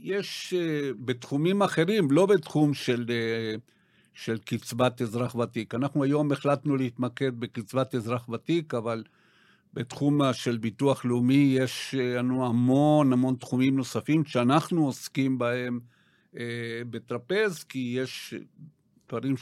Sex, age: male, 50-69